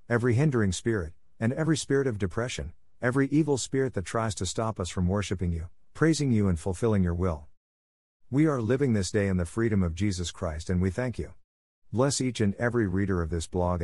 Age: 50-69